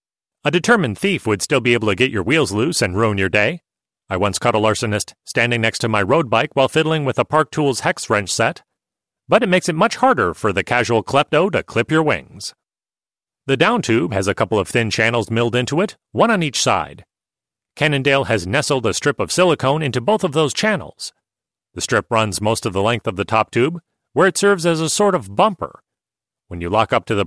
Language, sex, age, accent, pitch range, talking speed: English, male, 40-59, American, 115-160 Hz, 225 wpm